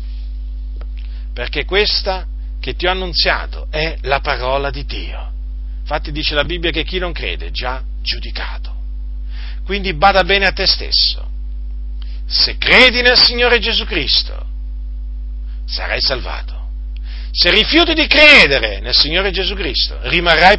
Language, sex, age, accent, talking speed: Italian, male, 50-69, native, 130 wpm